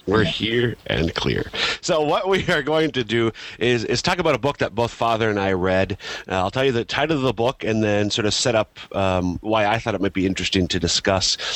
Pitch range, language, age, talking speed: 95-125 Hz, English, 40-59, 250 wpm